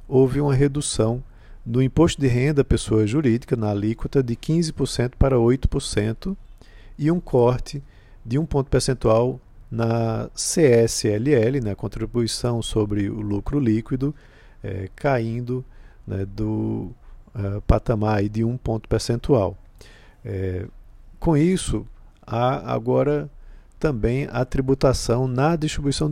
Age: 50-69